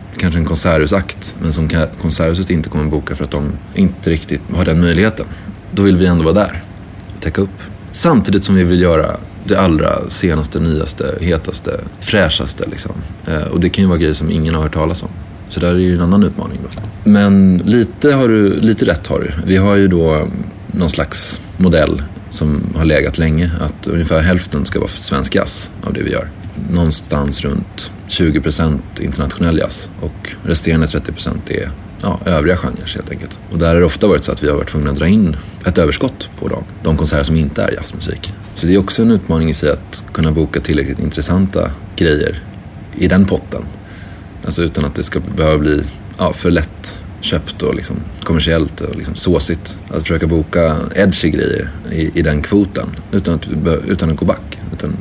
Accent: native